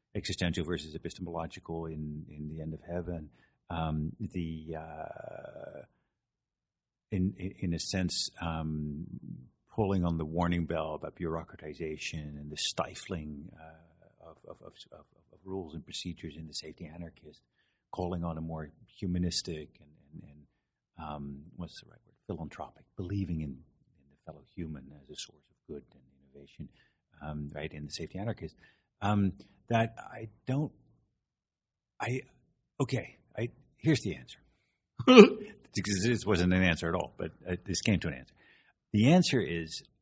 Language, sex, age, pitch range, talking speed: English, male, 50-69, 75-95 Hz, 150 wpm